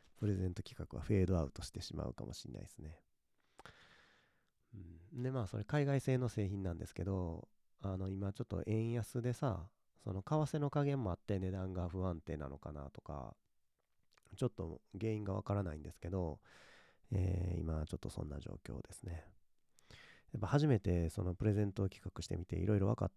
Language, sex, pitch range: Japanese, male, 85-110 Hz